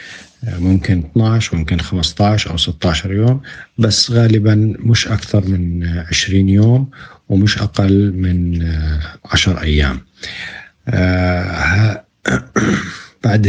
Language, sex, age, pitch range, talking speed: Arabic, male, 50-69, 90-110 Hz, 90 wpm